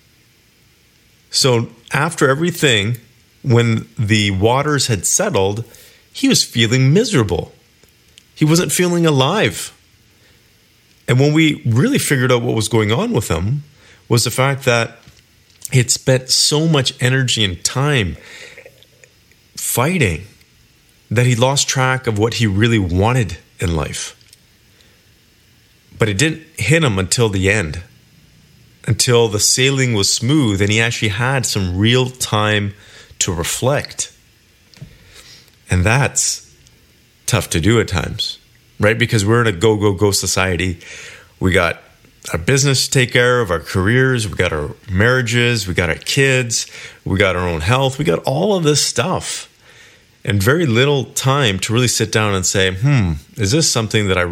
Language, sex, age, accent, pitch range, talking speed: English, male, 40-59, American, 105-130 Hz, 150 wpm